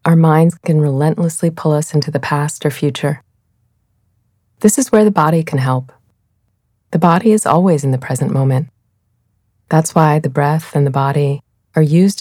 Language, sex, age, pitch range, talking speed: English, female, 30-49, 105-160 Hz, 170 wpm